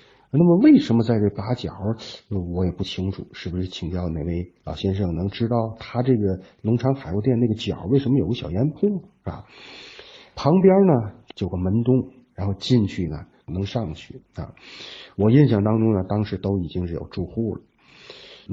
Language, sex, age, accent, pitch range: Chinese, male, 50-69, native, 90-130 Hz